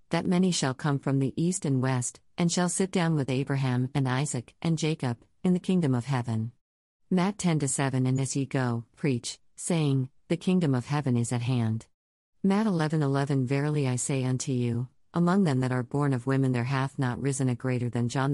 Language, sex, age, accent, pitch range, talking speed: English, female, 50-69, American, 125-160 Hz, 205 wpm